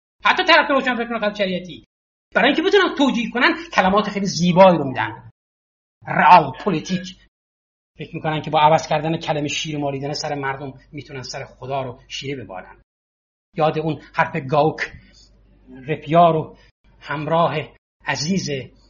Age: 30-49